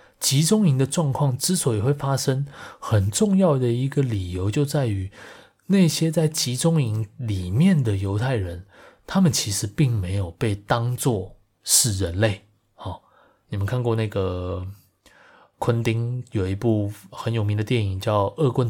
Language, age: Chinese, 20-39